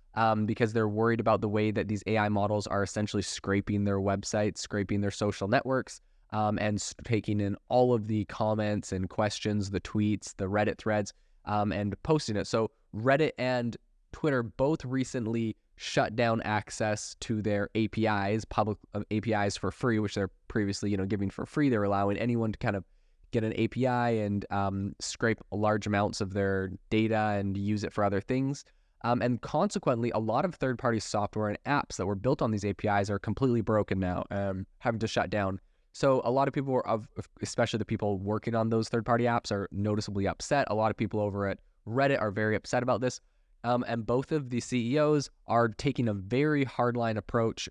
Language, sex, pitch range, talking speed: English, male, 100-120 Hz, 195 wpm